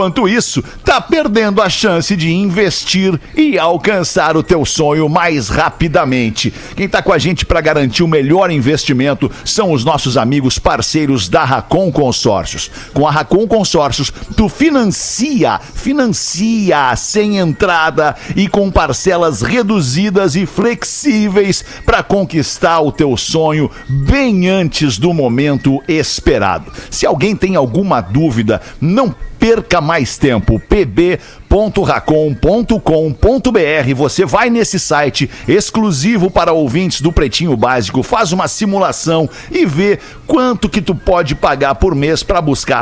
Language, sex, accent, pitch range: Portuguese, male, Brazilian, 150-205 Hz